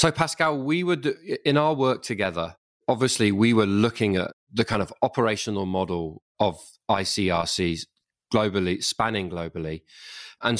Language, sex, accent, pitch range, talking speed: English, male, British, 95-130 Hz, 135 wpm